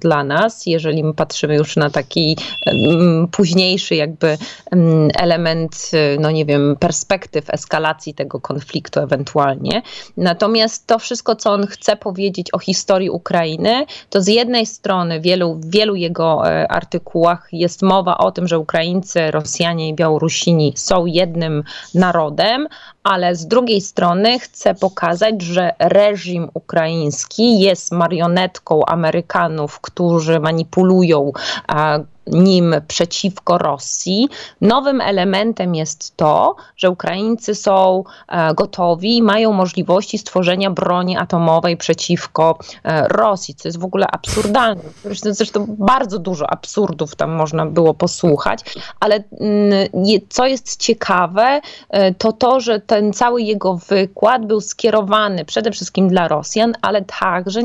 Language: Polish